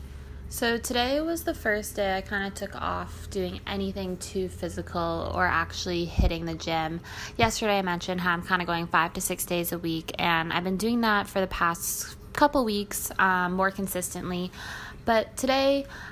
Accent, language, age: American, English, 20-39